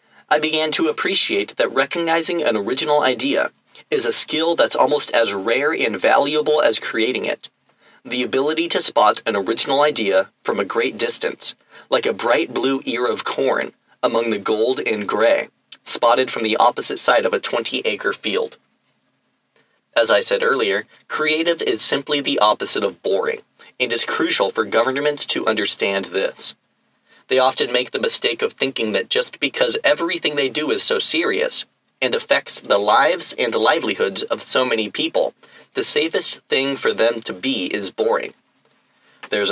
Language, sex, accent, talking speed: English, male, American, 165 wpm